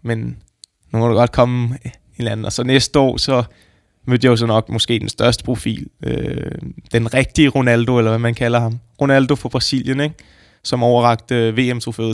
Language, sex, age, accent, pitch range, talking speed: Danish, male, 20-39, native, 110-125 Hz, 185 wpm